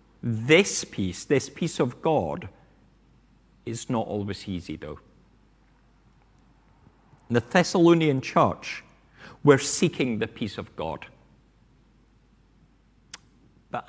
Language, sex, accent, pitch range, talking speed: English, male, British, 105-160 Hz, 90 wpm